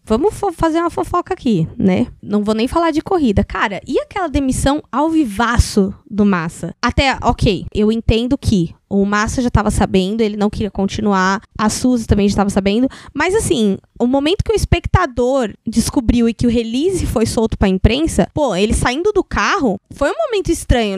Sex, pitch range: female, 210-315 Hz